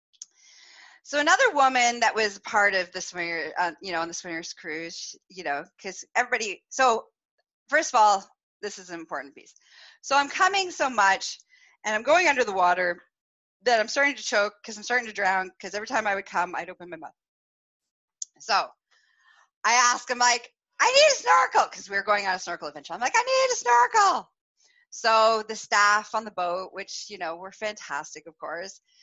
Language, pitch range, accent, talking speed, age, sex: English, 185-285 Hz, American, 200 wpm, 30-49, female